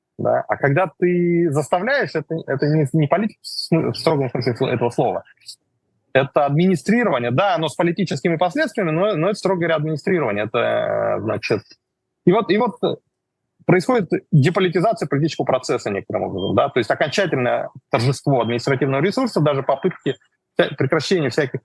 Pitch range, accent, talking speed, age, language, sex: 125-180 Hz, native, 135 wpm, 20-39, Russian, male